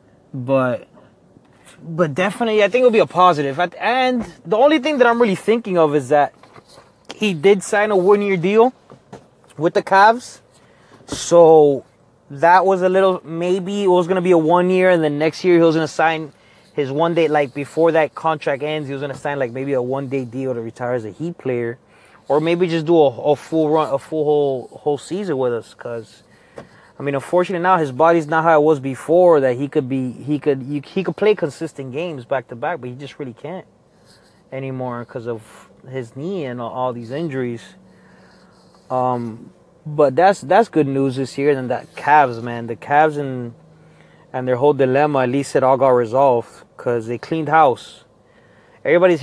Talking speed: 195 wpm